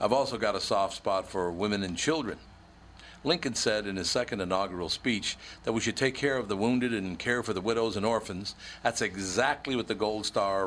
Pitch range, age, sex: 95-115 Hz, 60-79, male